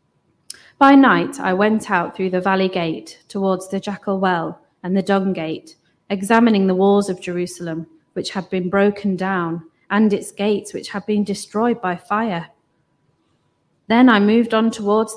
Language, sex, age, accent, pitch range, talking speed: English, female, 30-49, British, 180-220 Hz, 160 wpm